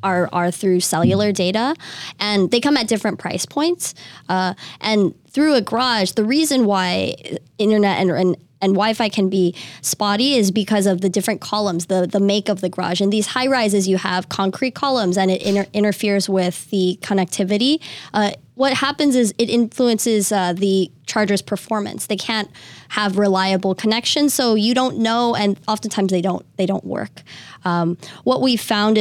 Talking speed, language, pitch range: 175 wpm, English, 185-220 Hz